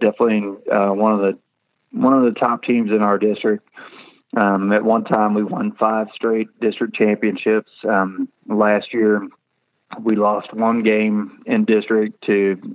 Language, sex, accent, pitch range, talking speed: English, male, American, 100-110 Hz, 155 wpm